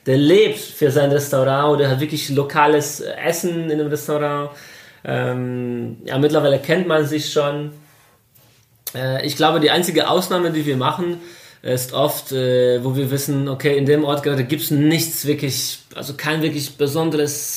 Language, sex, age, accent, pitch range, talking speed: German, male, 20-39, German, 135-160 Hz, 165 wpm